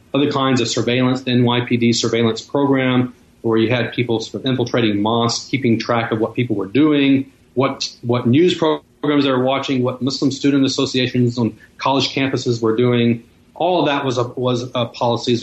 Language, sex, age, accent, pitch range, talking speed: English, male, 40-59, American, 110-130 Hz, 185 wpm